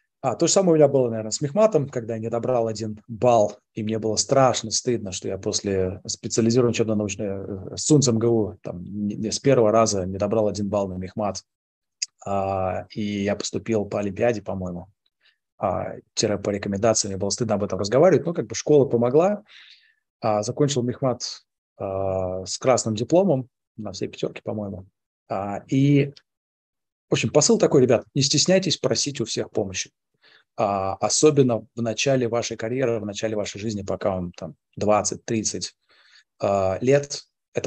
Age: 20-39